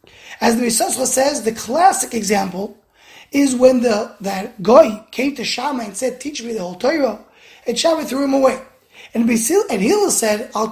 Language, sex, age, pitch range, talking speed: English, male, 20-39, 225-285 Hz, 185 wpm